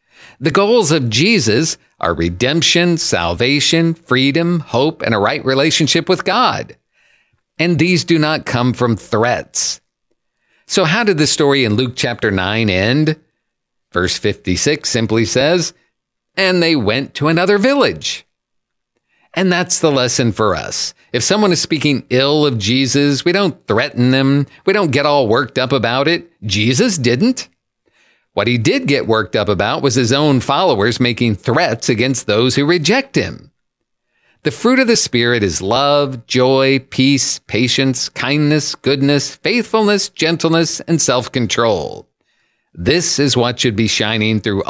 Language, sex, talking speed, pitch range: English, male, 150 wpm, 115-160 Hz